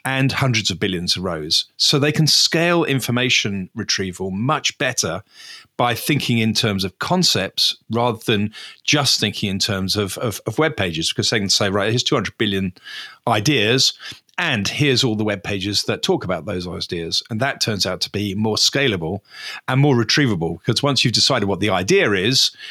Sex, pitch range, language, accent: male, 105-145 Hz, English, British